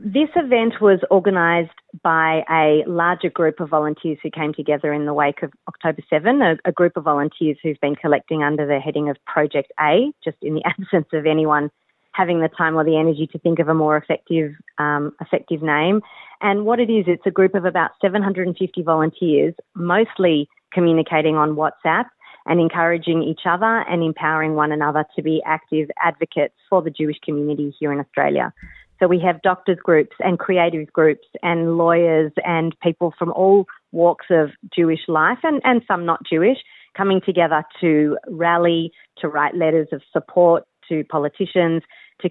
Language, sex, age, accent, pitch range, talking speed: Hebrew, female, 30-49, Australian, 155-175 Hz, 175 wpm